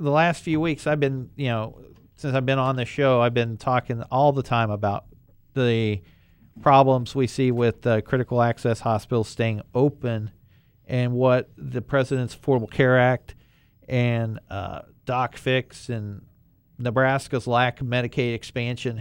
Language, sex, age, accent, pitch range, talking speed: English, male, 40-59, American, 115-135 Hz, 155 wpm